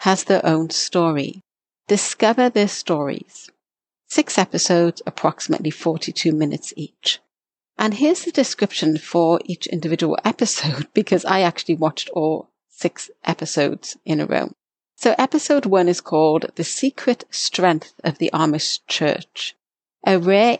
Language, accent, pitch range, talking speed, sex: English, British, 160-215 Hz, 130 wpm, female